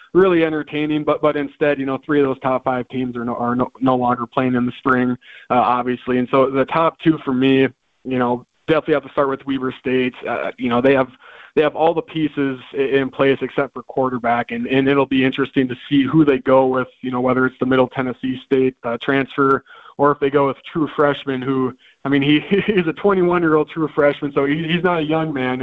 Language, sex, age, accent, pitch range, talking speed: English, male, 20-39, American, 125-145 Hz, 230 wpm